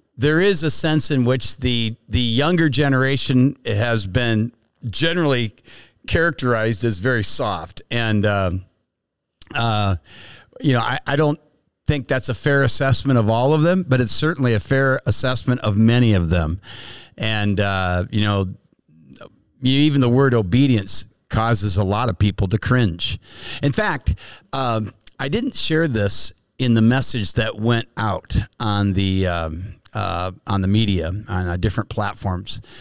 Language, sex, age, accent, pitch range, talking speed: English, male, 50-69, American, 105-130 Hz, 150 wpm